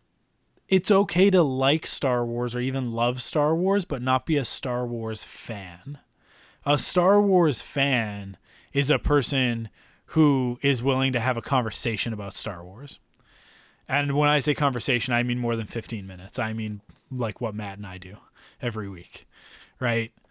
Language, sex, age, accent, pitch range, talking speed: English, male, 20-39, American, 115-145 Hz, 170 wpm